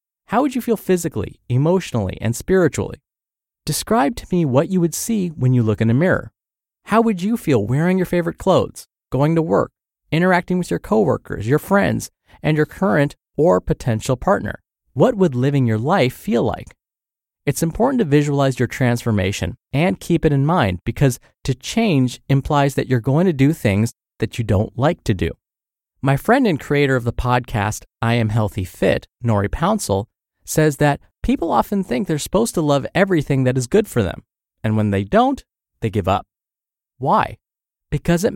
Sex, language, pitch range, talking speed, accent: male, English, 115-170 Hz, 180 wpm, American